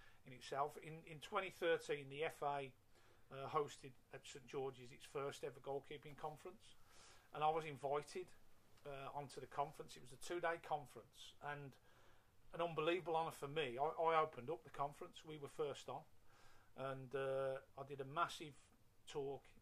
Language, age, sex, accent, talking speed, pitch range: English, 40-59, male, British, 165 wpm, 125-150 Hz